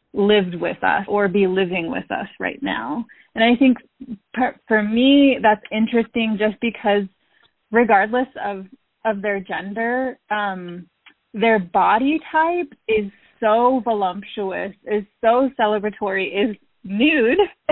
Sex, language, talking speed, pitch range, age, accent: female, English, 120 wpm, 195-245 Hz, 20-39, American